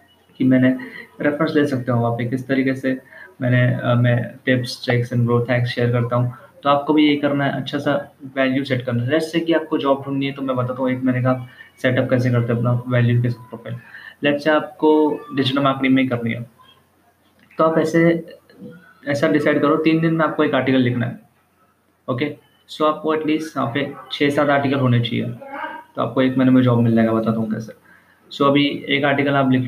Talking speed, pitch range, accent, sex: 215 wpm, 125-145 Hz, native, male